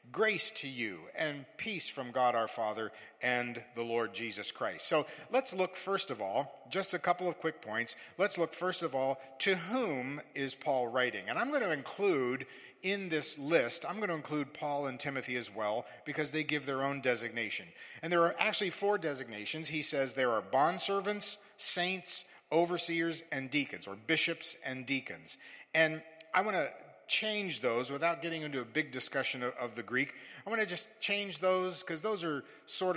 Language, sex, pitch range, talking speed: English, male, 130-180 Hz, 190 wpm